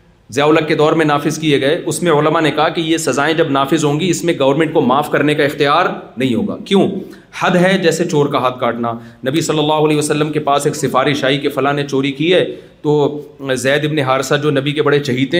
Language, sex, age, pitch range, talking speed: Urdu, male, 40-59, 150-175 Hz, 240 wpm